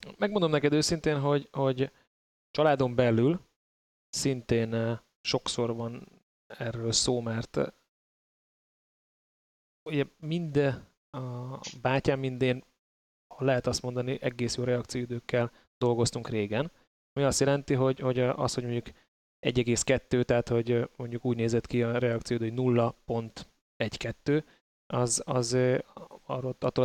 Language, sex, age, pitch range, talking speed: Hungarian, male, 20-39, 120-135 Hz, 110 wpm